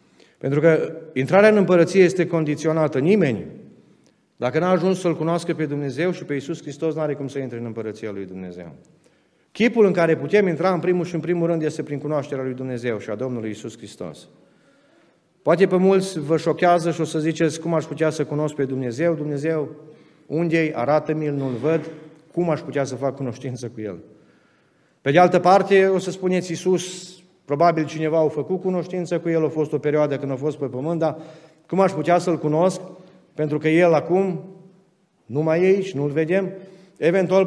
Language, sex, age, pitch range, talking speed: Romanian, male, 40-59, 145-175 Hz, 190 wpm